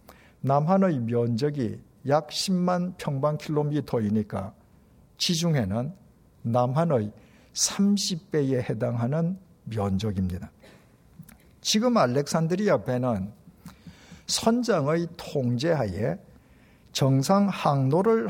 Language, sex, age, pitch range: Korean, male, 50-69, 115-185 Hz